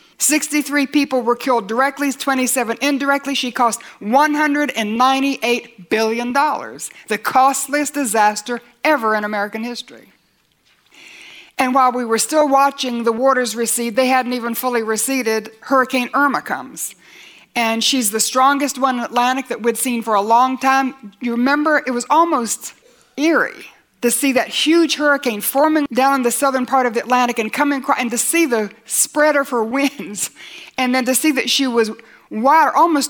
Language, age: English, 60-79